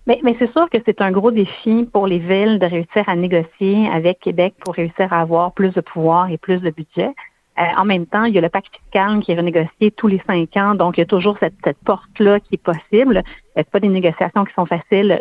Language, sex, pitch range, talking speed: French, female, 175-220 Hz, 255 wpm